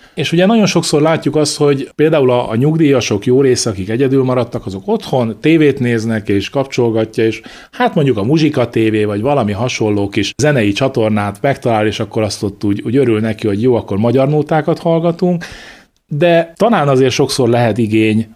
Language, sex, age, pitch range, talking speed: Hungarian, male, 30-49, 105-135 Hz, 175 wpm